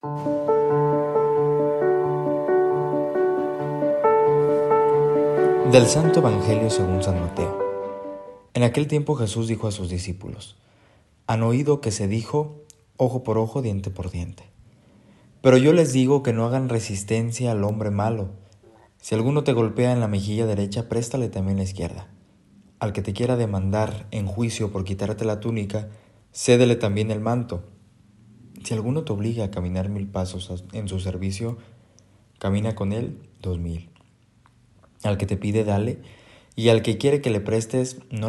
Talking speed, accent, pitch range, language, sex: 145 wpm, Mexican, 100-120 Hz, Spanish, male